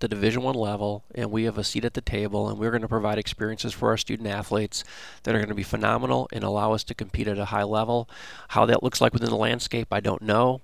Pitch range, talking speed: 105-115 Hz, 265 wpm